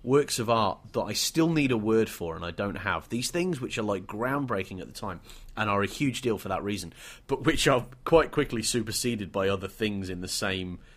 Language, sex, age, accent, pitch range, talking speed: English, male, 30-49, British, 90-120 Hz, 235 wpm